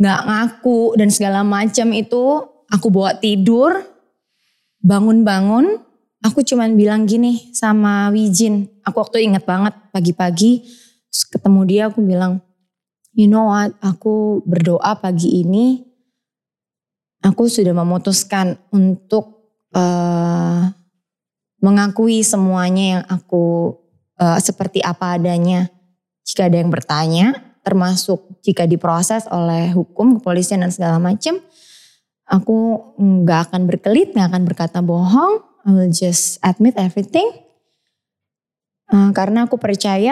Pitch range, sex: 185-220 Hz, female